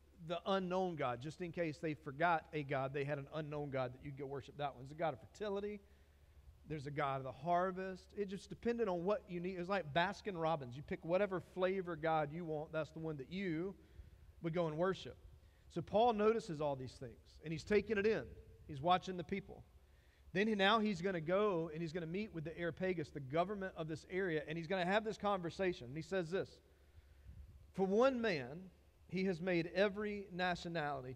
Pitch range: 145-190 Hz